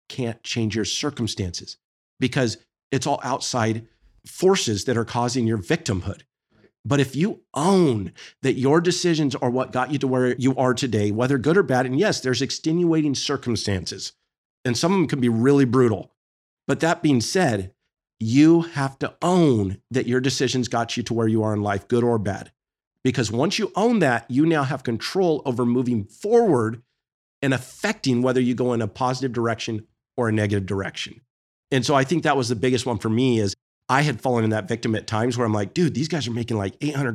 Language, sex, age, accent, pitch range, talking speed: English, male, 50-69, American, 115-145 Hz, 200 wpm